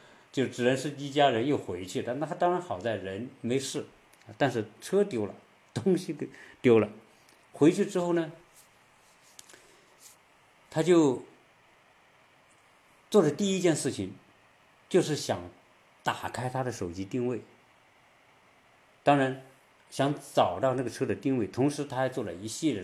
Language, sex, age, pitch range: Chinese, male, 50-69, 105-135 Hz